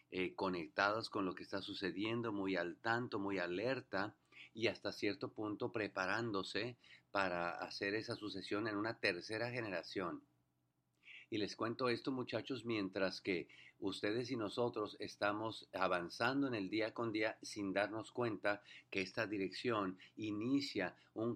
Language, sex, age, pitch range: English, male, 50-69, 90-115 Hz